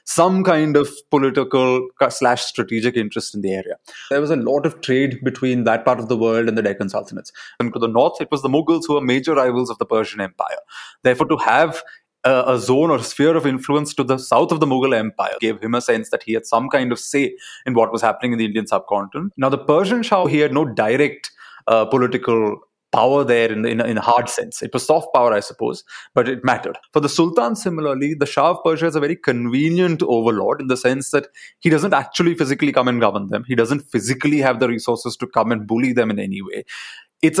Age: 20-39